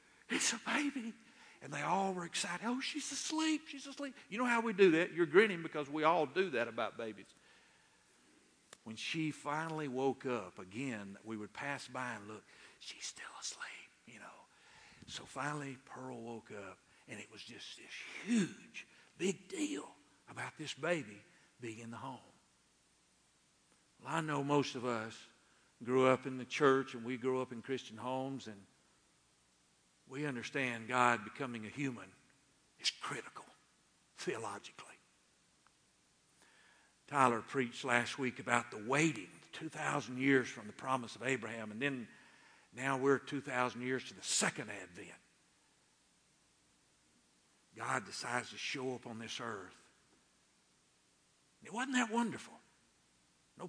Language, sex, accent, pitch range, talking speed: English, male, American, 120-170 Hz, 145 wpm